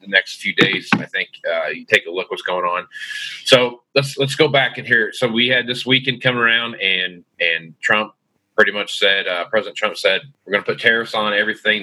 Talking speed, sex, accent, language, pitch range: 225 wpm, male, American, English, 95-145 Hz